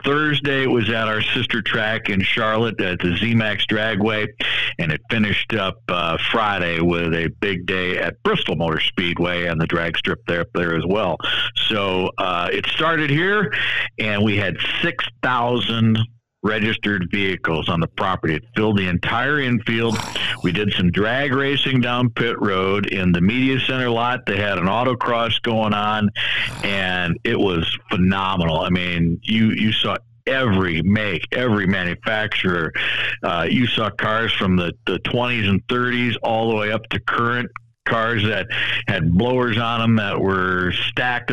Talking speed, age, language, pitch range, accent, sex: 165 wpm, 60-79, English, 90-115 Hz, American, male